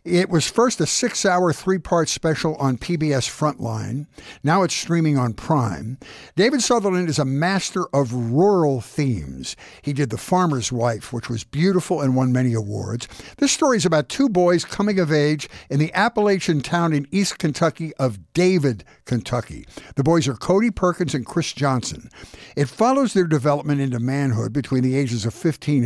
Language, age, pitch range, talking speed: English, 60-79, 130-180 Hz, 170 wpm